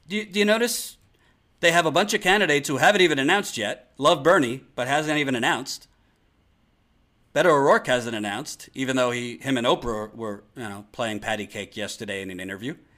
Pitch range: 110-175 Hz